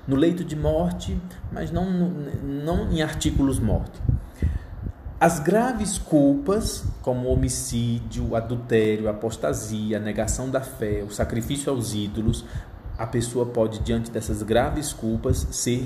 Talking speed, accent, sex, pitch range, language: 135 wpm, Brazilian, male, 105-135 Hz, Portuguese